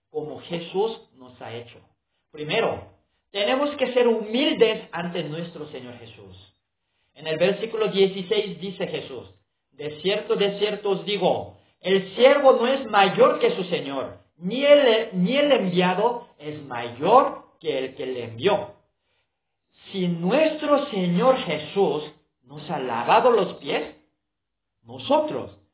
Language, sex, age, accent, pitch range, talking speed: Spanish, male, 50-69, Mexican, 130-220 Hz, 130 wpm